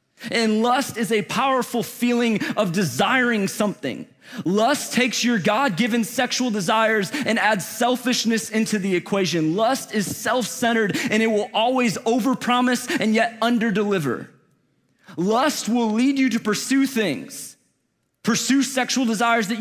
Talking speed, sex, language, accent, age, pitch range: 130 wpm, male, English, American, 30-49, 200-250 Hz